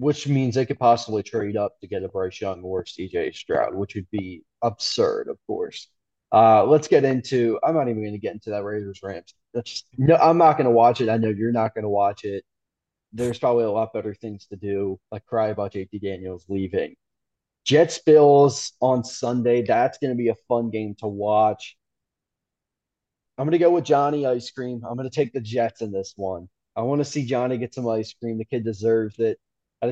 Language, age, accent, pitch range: English, 20-39, American, 105-125 Hz